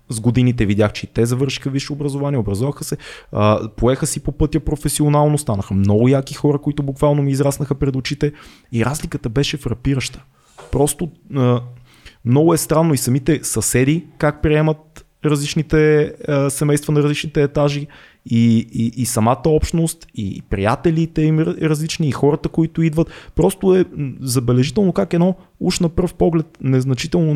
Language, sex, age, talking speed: Bulgarian, male, 20-39, 145 wpm